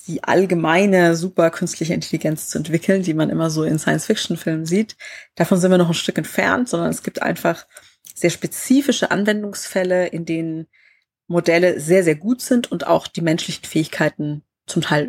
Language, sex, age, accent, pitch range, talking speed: German, female, 20-39, German, 155-195 Hz, 165 wpm